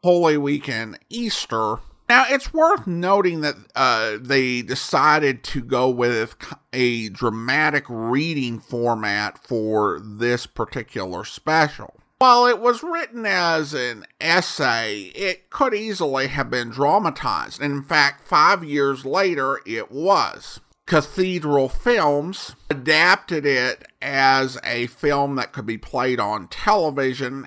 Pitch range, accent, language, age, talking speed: 120-170 Hz, American, English, 50-69, 120 wpm